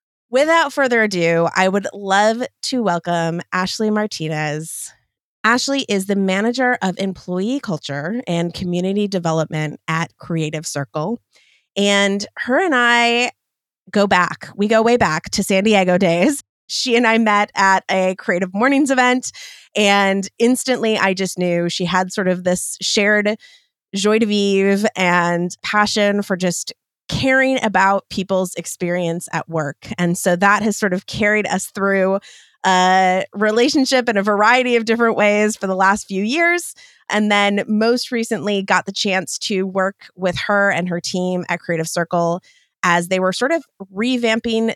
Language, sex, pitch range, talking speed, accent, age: English, female, 175-215 Hz, 155 wpm, American, 20-39